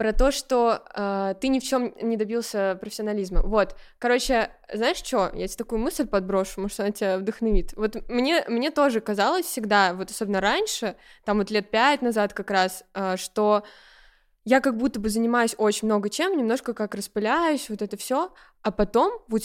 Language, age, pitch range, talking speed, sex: Russian, 20-39, 205-250 Hz, 180 wpm, female